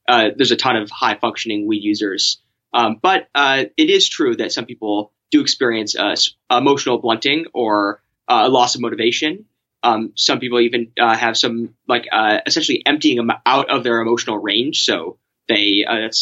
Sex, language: male, English